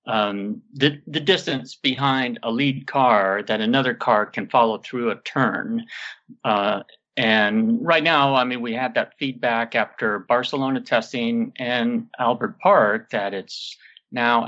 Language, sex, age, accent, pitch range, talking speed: English, male, 50-69, American, 115-185 Hz, 145 wpm